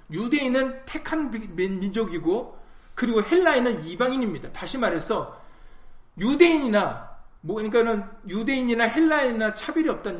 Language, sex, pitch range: Korean, male, 190-265 Hz